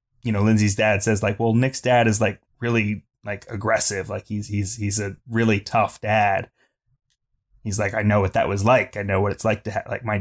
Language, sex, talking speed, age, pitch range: English, male, 225 wpm, 20-39, 100-120 Hz